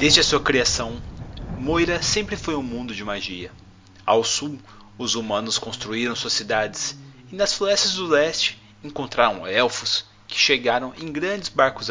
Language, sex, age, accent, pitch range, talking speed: Portuguese, male, 30-49, Brazilian, 110-145 Hz, 150 wpm